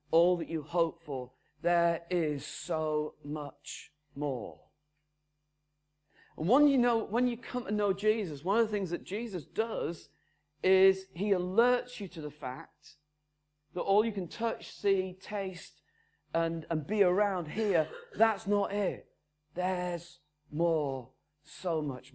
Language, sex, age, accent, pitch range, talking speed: English, male, 40-59, British, 150-195 Hz, 145 wpm